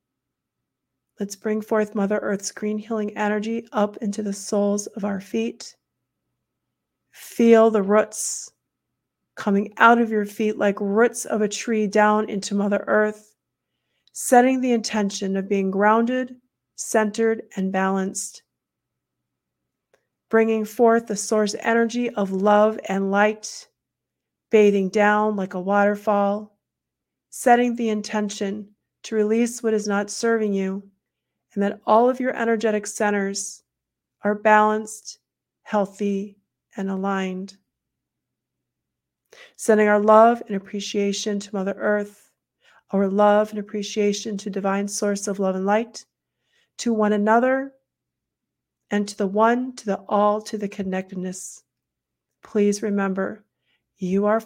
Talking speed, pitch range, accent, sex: 125 wpm, 200-220 Hz, American, female